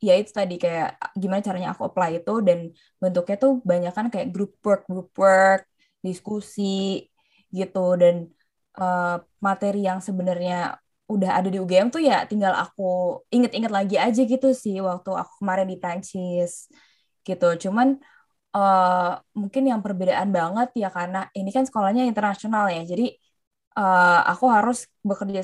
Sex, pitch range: female, 185-230 Hz